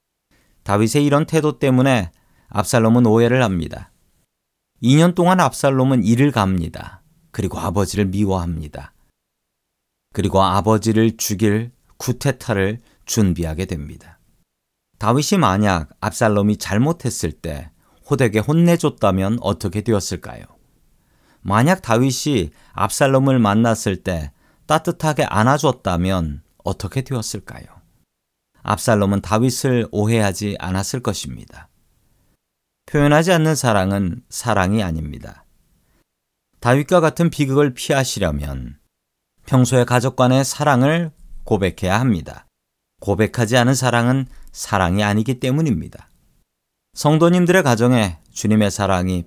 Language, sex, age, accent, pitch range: Korean, male, 40-59, native, 95-135 Hz